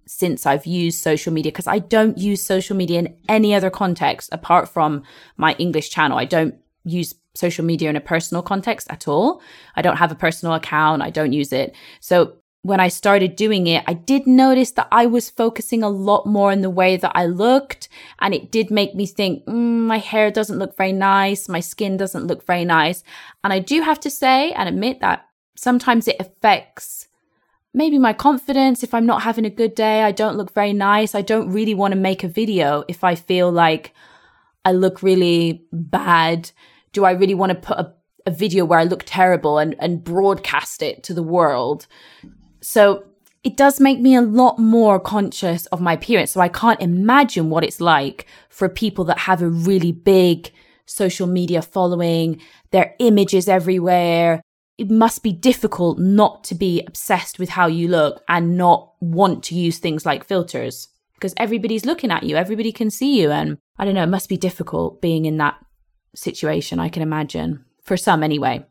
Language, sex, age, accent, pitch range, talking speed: English, female, 20-39, British, 170-215 Hz, 195 wpm